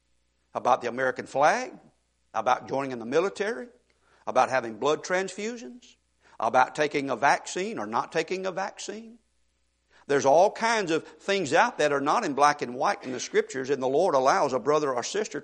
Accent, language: American, English